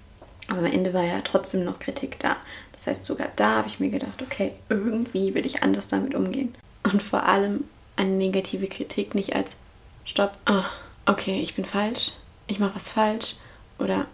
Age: 20-39